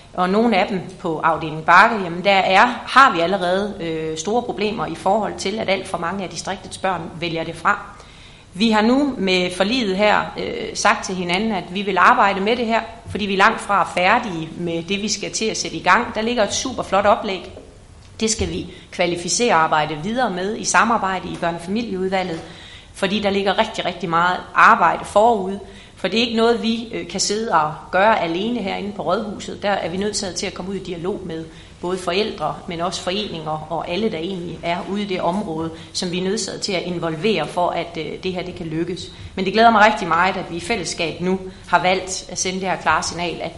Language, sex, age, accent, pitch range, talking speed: Danish, female, 30-49, native, 170-205 Hz, 220 wpm